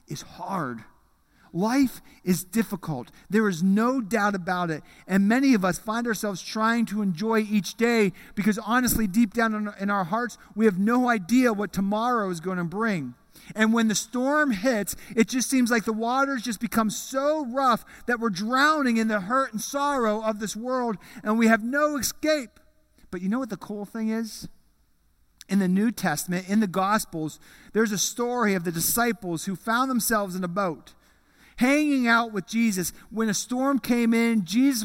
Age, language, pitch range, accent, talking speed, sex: 40-59, English, 180-235 Hz, American, 185 wpm, male